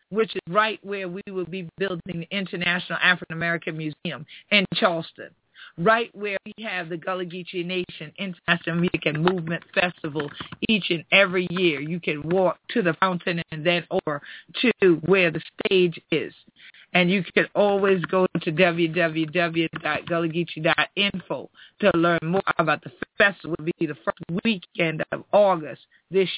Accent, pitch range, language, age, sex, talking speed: American, 170-210 Hz, English, 50-69, female, 150 wpm